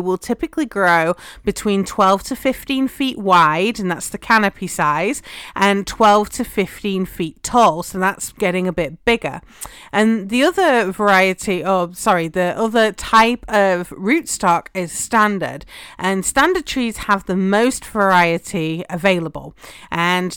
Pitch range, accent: 175-220 Hz, British